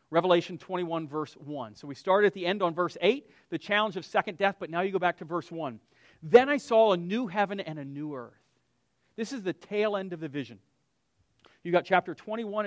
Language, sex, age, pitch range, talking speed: English, male, 40-59, 160-205 Hz, 225 wpm